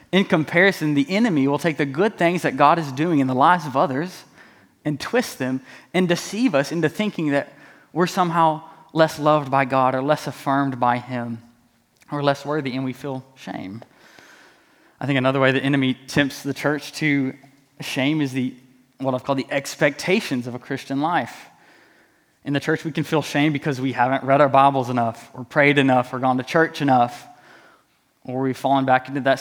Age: 20-39